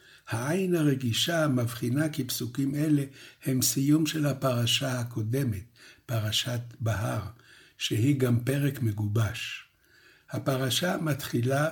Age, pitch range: 60-79, 120-150 Hz